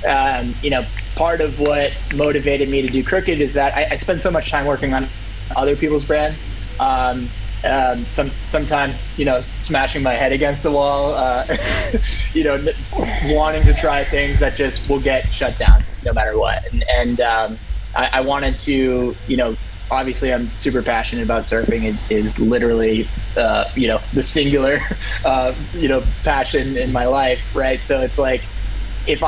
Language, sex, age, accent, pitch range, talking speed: English, male, 20-39, American, 110-140 Hz, 180 wpm